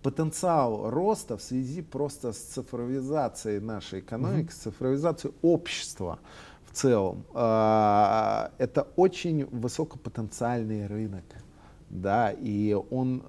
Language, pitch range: Russian, 105-140 Hz